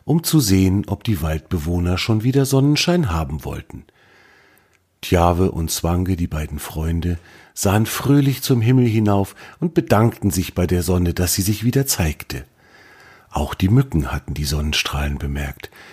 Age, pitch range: 40-59, 90-120 Hz